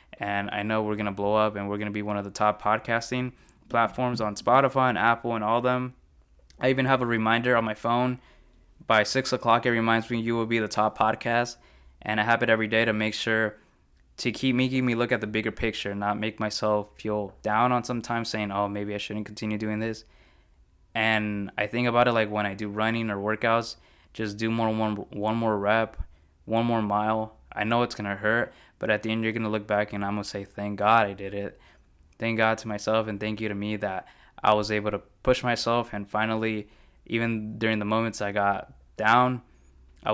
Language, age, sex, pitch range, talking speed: English, 20-39, male, 105-115 Hz, 225 wpm